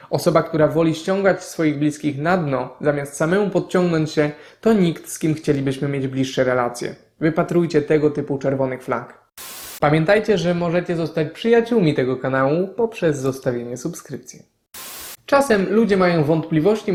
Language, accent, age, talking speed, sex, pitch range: Polish, native, 20-39, 140 wpm, male, 140-180 Hz